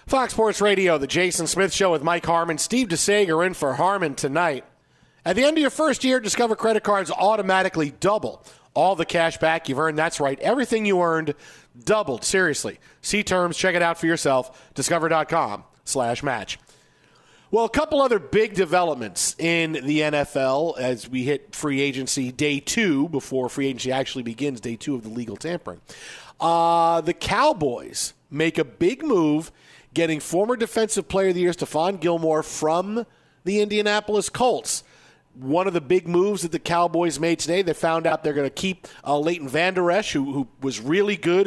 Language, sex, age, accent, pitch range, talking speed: English, male, 40-59, American, 150-190 Hz, 180 wpm